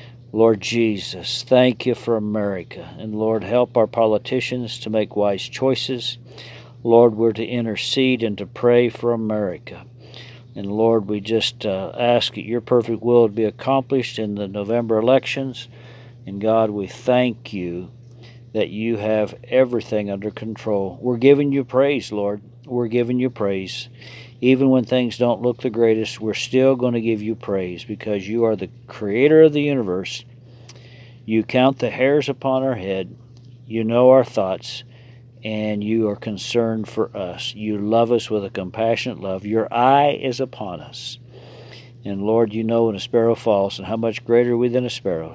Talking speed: 170 wpm